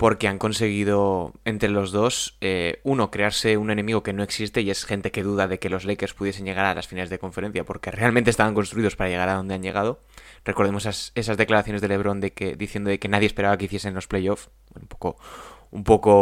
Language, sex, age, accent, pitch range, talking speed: Spanish, male, 20-39, Spanish, 95-115 Hz, 230 wpm